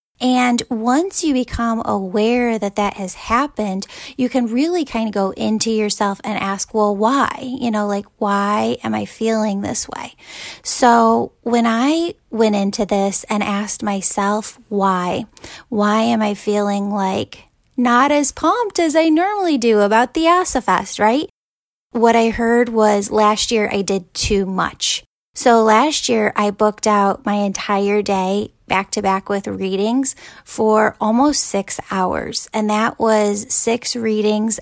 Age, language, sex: 10-29, English, female